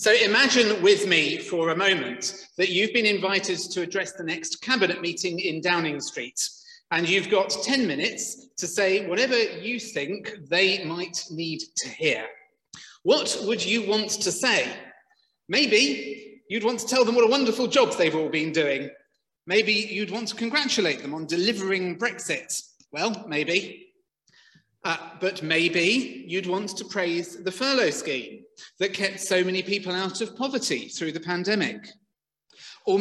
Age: 40-59